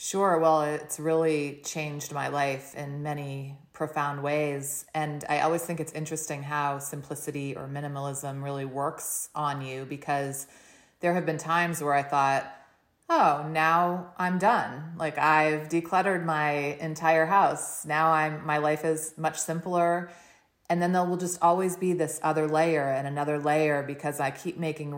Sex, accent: female, American